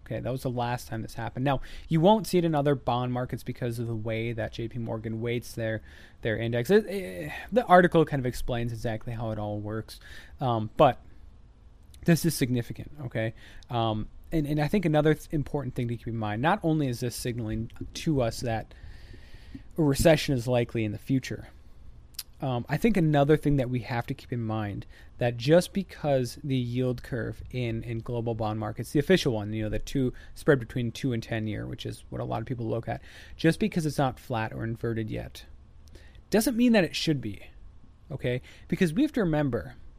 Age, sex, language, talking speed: 20-39, male, English, 210 wpm